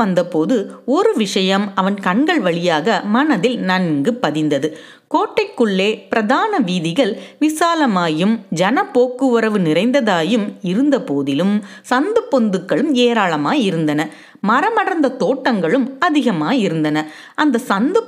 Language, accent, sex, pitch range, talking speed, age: Tamil, native, female, 195-290 Hz, 95 wpm, 30-49